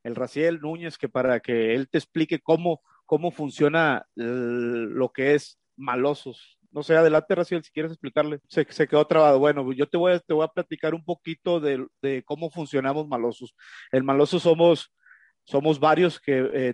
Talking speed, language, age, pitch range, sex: 185 wpm, Spanish, 50-69, 130-165 Hz, male